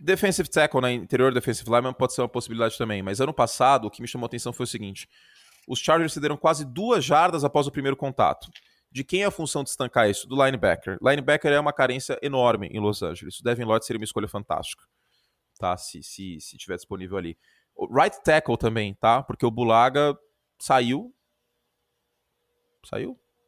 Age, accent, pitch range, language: 20-39, Brazilian, 100-130 Hz, Portuguese